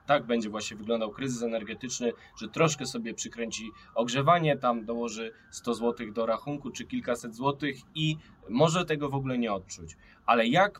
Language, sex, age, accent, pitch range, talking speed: Polish, male, 10-29, native, 115-145 Hz, 160 wpm